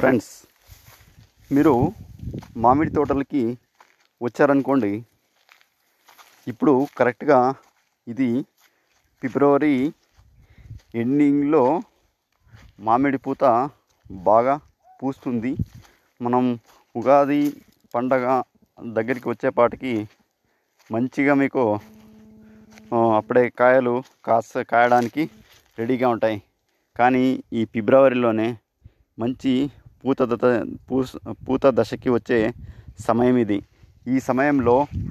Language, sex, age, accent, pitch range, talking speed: Telugu, male, 30-49, native, 110-130 Hz, 70 wpm